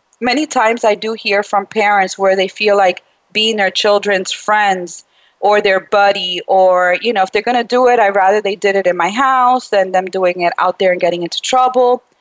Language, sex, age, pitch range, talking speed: English, female, 30-49, 200-245 Hz, 220 wpm